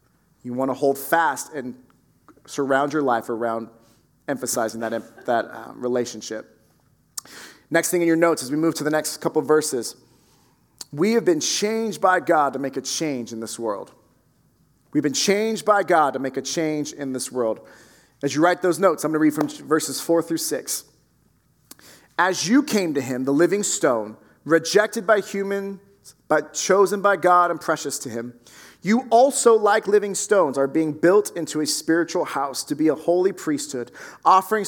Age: 30-49